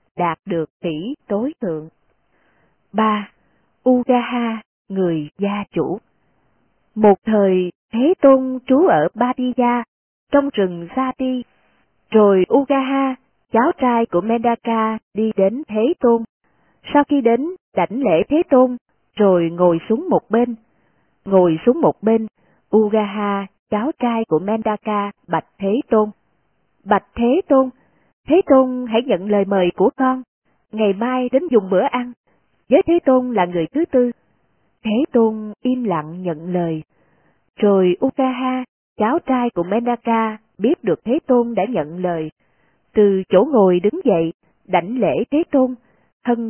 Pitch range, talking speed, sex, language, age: 190-255 Hz, 140 wpm, female, Vietnamese, 20-39